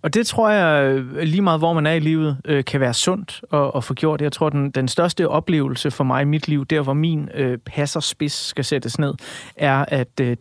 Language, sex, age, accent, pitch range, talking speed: Danish, male, 30-49, native, 135-165 Hz, 230 wpm